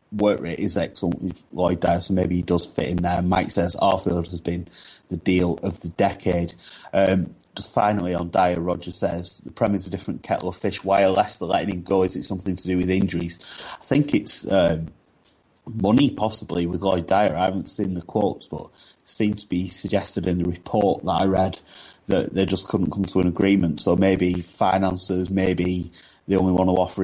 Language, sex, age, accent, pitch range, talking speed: English, male, 30-49, British, 85-95 Hz, 210 wpm